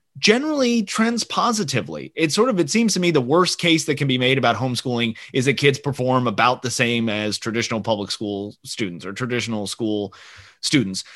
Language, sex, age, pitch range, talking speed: English, male, 30-49, 110-150 Hz, 190 wpm